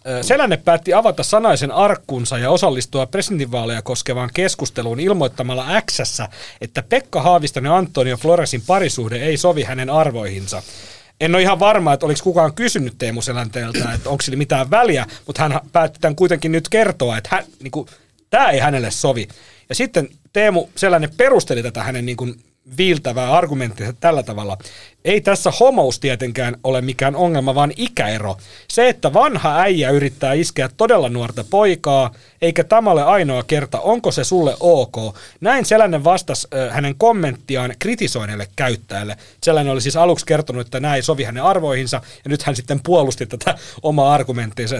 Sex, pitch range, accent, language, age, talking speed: male, 125-170 Hz, native, Finnish, 40-59, 160 wpm